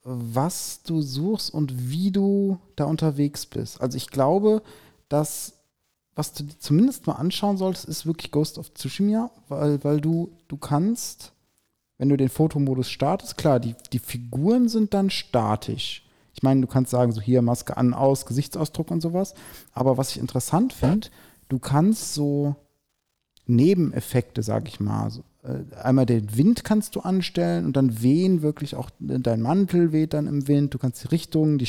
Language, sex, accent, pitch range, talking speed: German, male, German, 125-160 Hz, 170 wpm